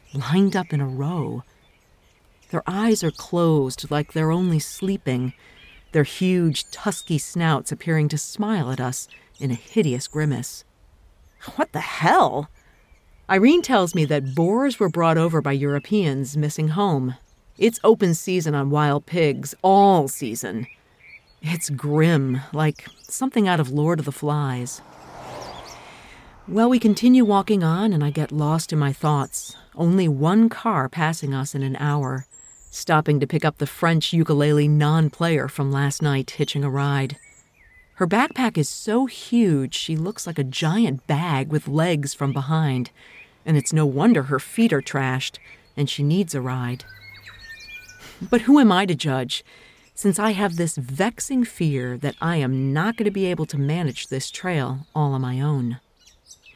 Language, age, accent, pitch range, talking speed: English, 40-59, American, 135-180 Hz, 160 wpm